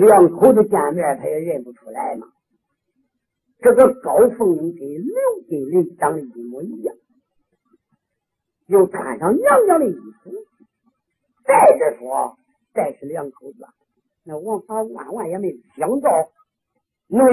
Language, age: Chinese, 50-69